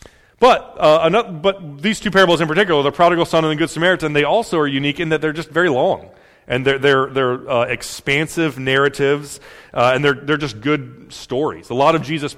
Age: 30-49